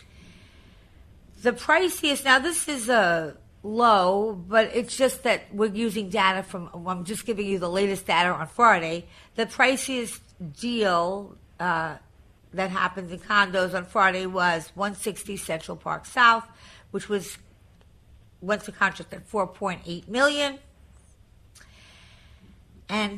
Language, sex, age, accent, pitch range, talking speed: English, female, 50-69, American, 180-235 Hz, 125 wpm